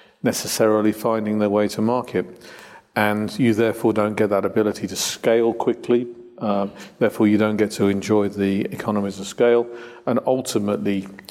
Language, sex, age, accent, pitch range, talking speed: English, male, 50-69, British, 100-115 Hz, 155 wpm